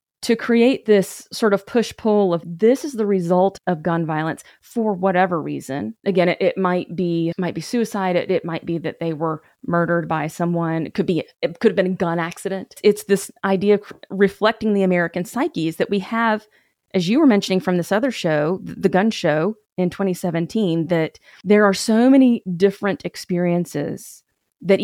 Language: English